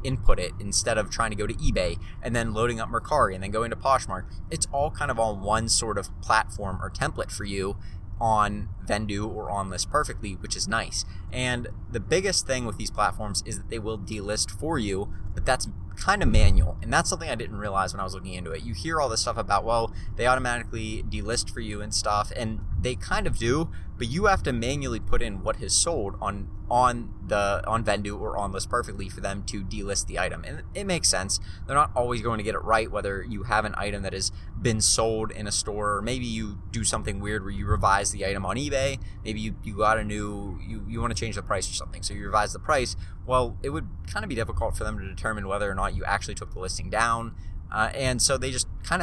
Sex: male